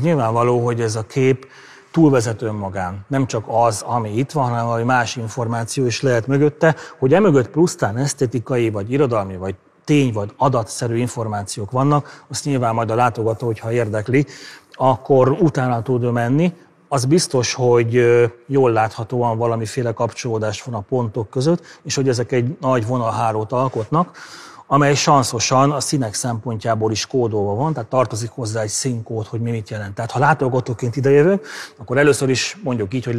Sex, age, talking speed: male, 30-49, 160 wpm